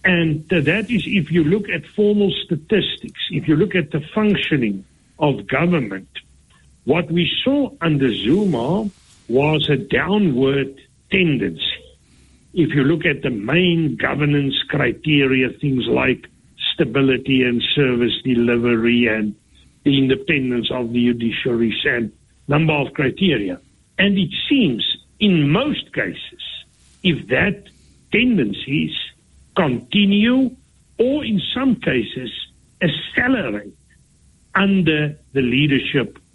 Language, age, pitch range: English, 60-79, 125-180 Hz